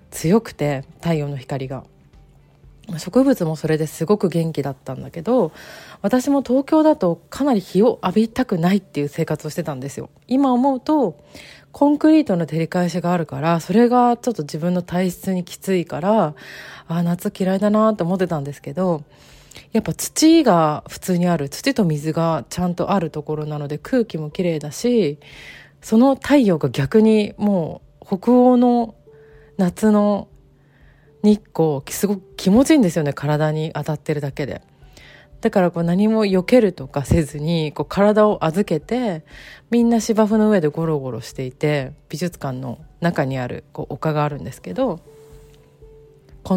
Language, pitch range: Japanese, 150-210 Hz